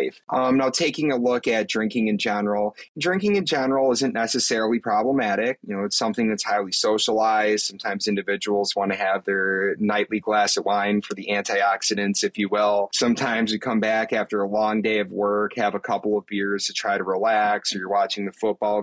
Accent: American